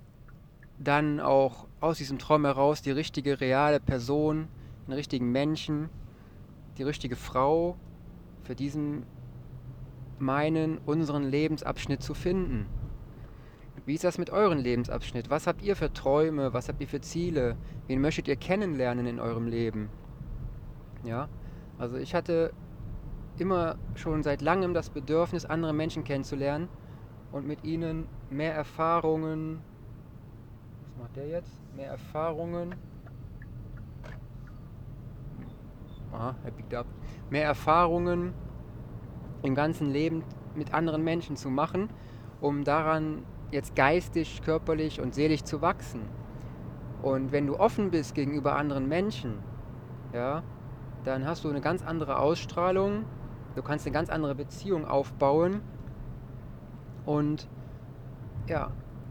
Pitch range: 125-155 Hz